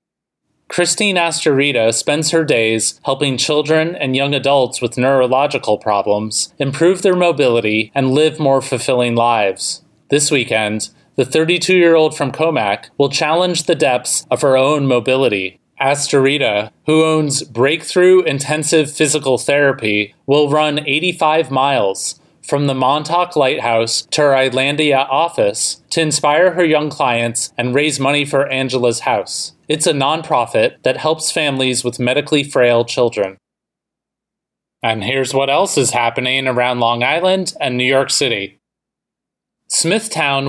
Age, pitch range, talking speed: 30-49, 125-160 Hz, 130 wpm